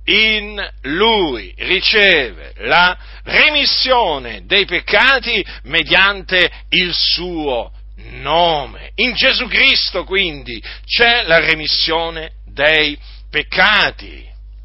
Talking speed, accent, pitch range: 80 wpm, native, 160-235 Hz